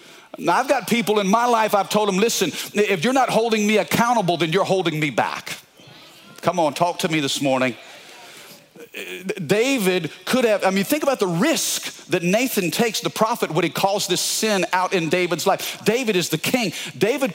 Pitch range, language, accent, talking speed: 160-210 Hz, English, American, 195 wpm